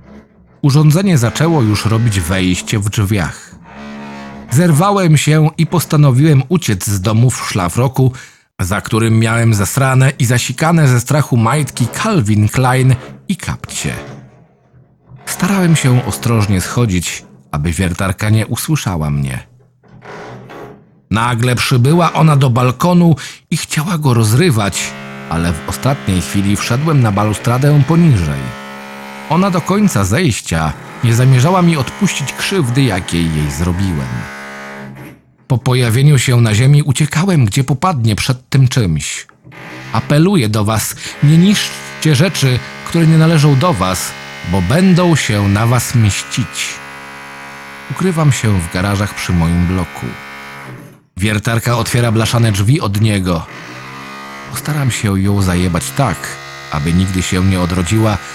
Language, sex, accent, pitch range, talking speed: Polish, male, native, 85-140 Hz, 120 wpm